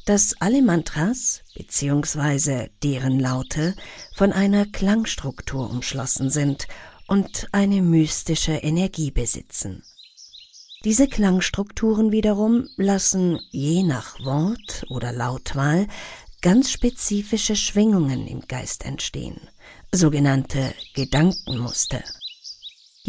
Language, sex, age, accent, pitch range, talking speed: German, female, 50-69, German, 145-210 Hz, 85 wpm